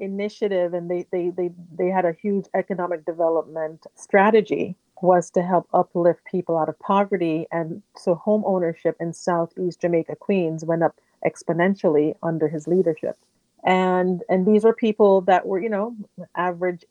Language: English